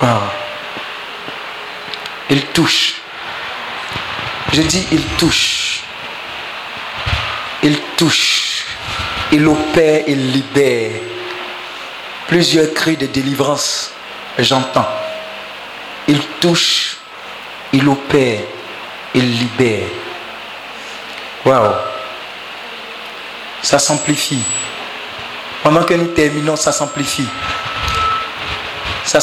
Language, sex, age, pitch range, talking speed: French, male, 50-69, 130-155 Hz, 70 wpm